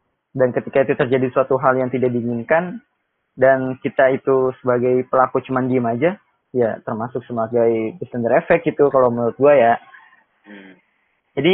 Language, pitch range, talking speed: Indonesian, 130-155 Hz, 145 wpm